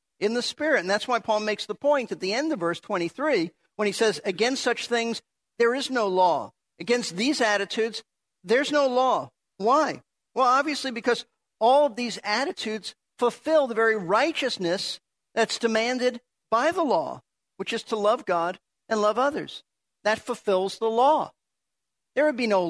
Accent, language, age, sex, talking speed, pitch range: American, English, 50-69, male, 170 wpm, 175-240 Hz